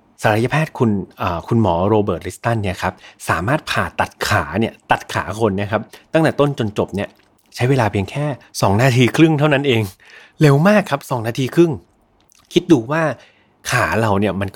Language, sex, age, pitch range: Thai, male, 30-49, 100-135 Hz